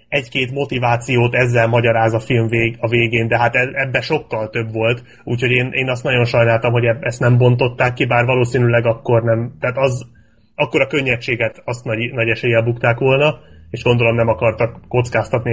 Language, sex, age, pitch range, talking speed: Hungarian, male, 30-49, 115-140 Hz, 180 wpm